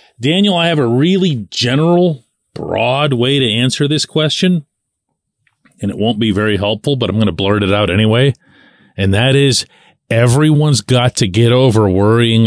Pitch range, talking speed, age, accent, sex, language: 105-140 Hz, 170 wpm, 40-59, American, male, English